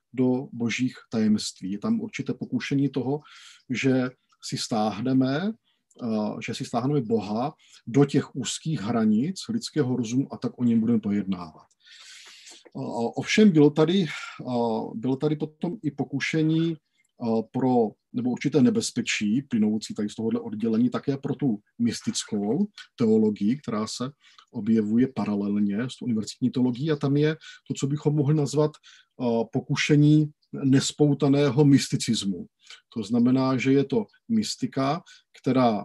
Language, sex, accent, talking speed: Czech, male, native, 120 wpm